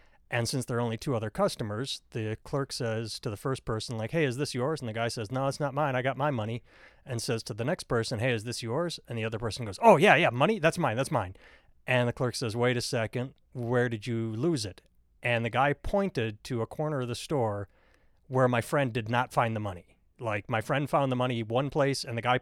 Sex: male